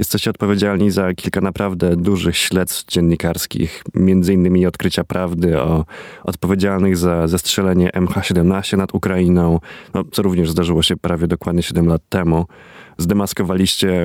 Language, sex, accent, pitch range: Polish, male, native, 90-105 Hz